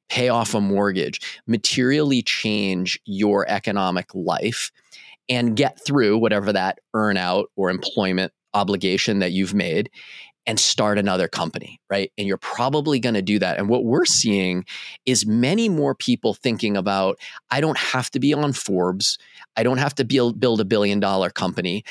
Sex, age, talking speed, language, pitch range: male, 30-49, 165 wpm, English, 100-125 Hz